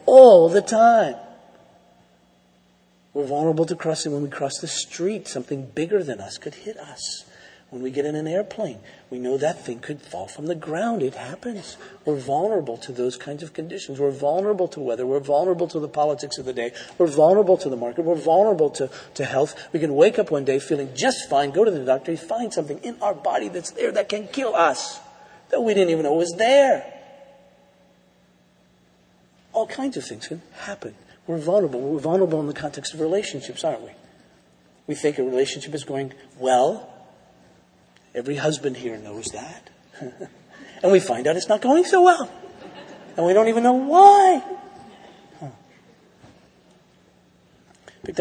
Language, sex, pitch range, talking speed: English, male, 140-210 Hz, 175 wpm